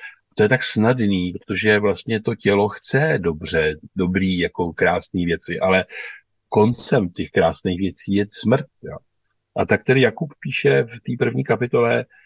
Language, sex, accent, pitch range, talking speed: Czech, male, native, 90-110 Hz, 150 wpm